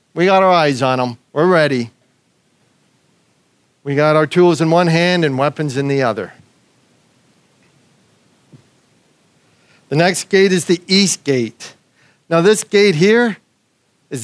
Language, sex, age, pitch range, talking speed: English, male, 50-69, 135-175 Hz, 135 wpm